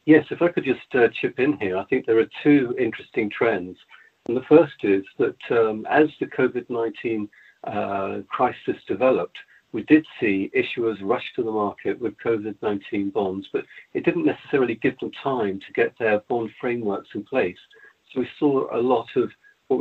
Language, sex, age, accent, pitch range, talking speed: English, male, 50-69, British, 105-155 Hz, 180 wpm